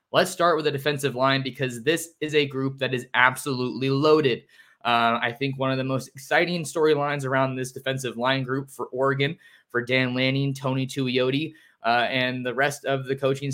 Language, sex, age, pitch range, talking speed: English, male, 20-39, 125-140 Hz, 190 wpm